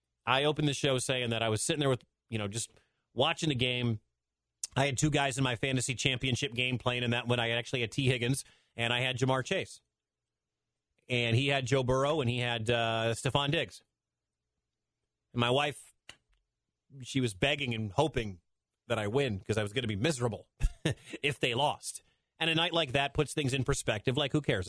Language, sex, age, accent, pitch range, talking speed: English, male, 30-49, American, 110-140 Hz, 200 wpm